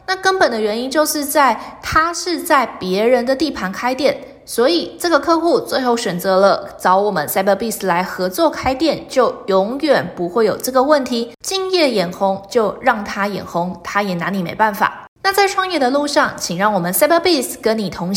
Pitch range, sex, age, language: 195-290 Hz, female, 20-39, Chinese